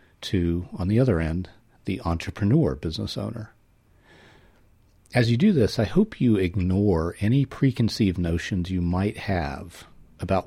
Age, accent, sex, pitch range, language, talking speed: 50-69, American, male, 85-110 Hz, English, 140 wpm